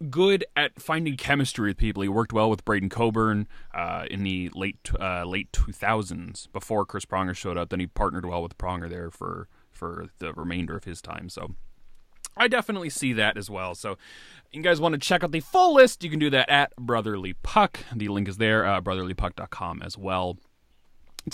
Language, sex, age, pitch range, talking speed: English, male, 30-49, 95-155 Hz, 195 wpm